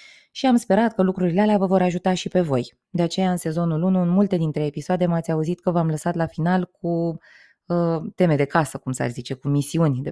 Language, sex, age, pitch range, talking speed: Romanian, female, 20-39, 140-175 Hz, 230 wpm